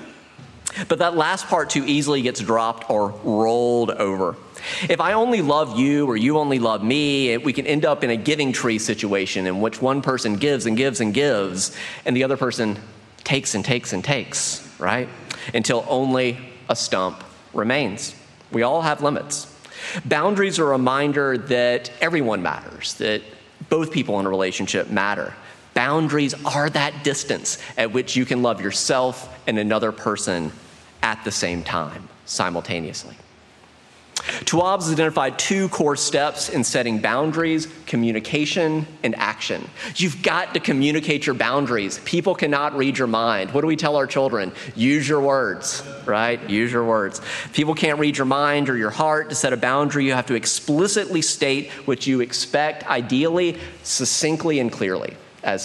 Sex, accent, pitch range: male, American, 115-150 Hz